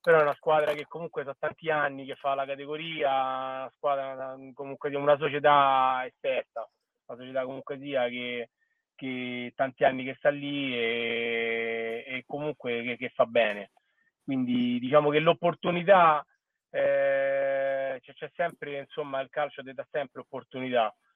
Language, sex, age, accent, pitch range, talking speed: Italian, male, 30-49, native, 125-145 Hz, 145 wpm